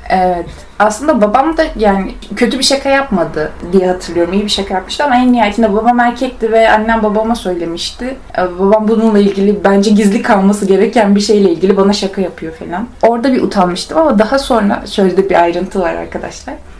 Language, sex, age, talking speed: Turkish, female, 30-49, 175 wpm